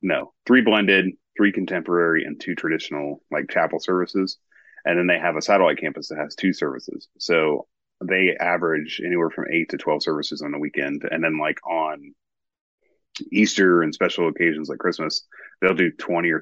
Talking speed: 175 wpm